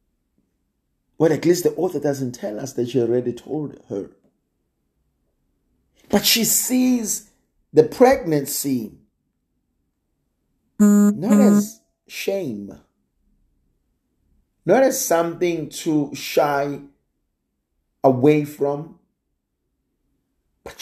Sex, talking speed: male, 85 wpm